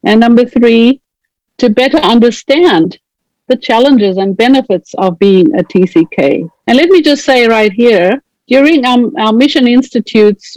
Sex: female